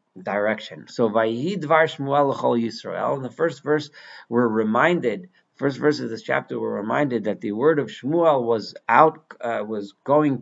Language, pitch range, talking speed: English, 110-150 Hz, 150 wpm